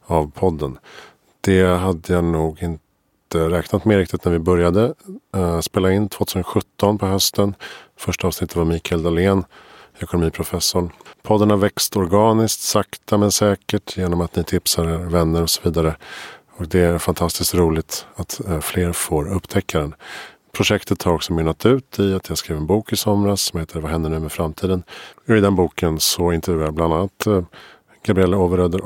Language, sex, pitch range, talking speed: Swedish, male, 80-95 Hz, 165 wpm